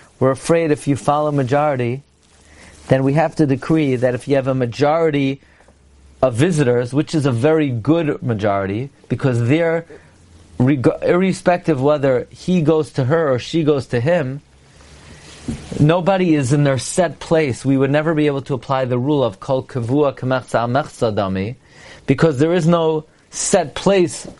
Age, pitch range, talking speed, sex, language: 40-59, 135-190 Hz, 155 wpm, male, English